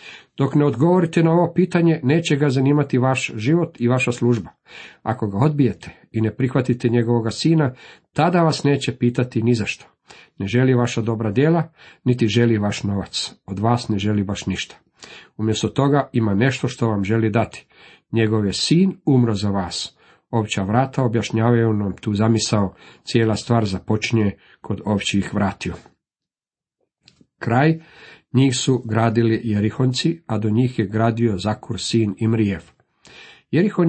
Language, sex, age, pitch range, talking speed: Croatian, male, 50-69, 110-145 Hz, 150 wpm